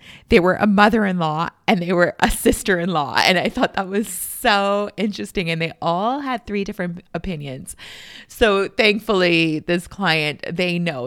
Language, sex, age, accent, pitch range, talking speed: English, female, 30-49, American, 165-210 Hz, 155 wpm